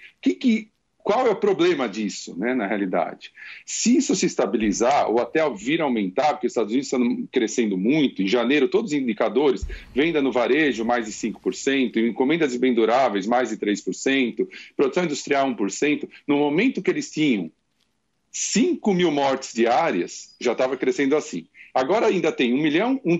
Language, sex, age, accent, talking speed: Portuguese, male, 40-59, Brazilian, 170 wpm